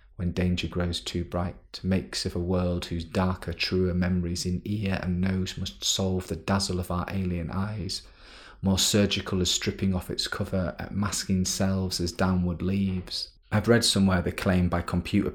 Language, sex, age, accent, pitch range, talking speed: English, male, 30-49, British, 90-95 Hz, 175 wpm